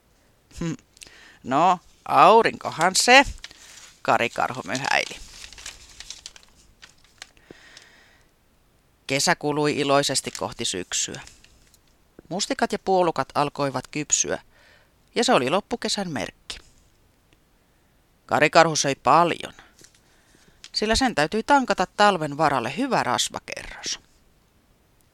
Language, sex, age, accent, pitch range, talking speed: Finnish, female, 30-49, native, 135-185 Hz, 75 wpm